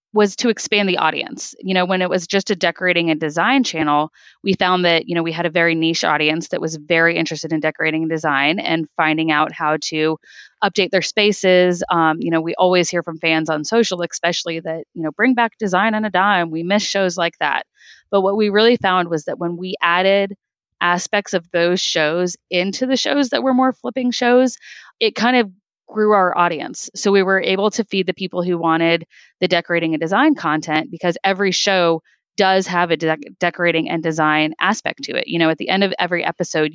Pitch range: 165-190 Hz